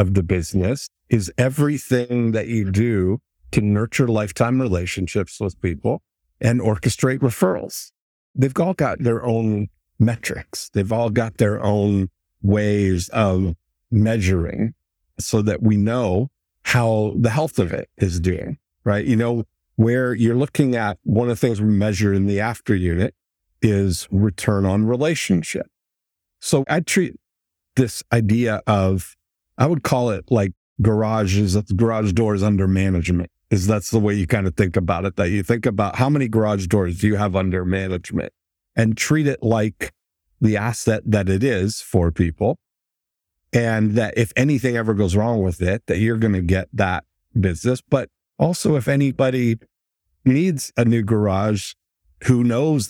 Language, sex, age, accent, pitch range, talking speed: English, male, 50-69, American, 95-120 Hz, 160 wpm